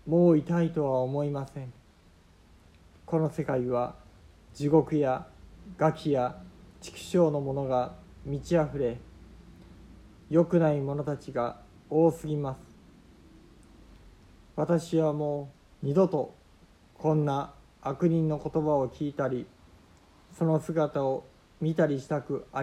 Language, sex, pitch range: Japanese, male, 100-155 Hz